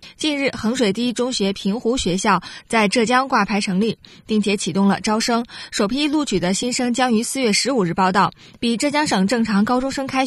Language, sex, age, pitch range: Chinese, female, 20-39, 195-245 Hz